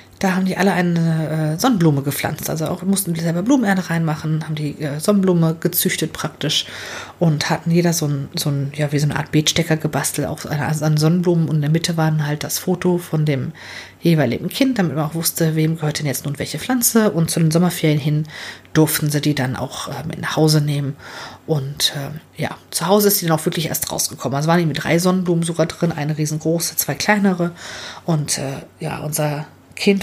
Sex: female